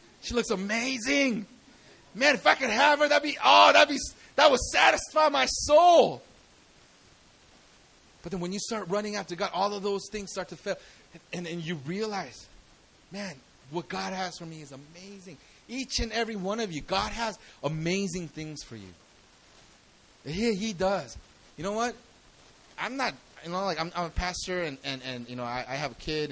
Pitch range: 170-245 Hz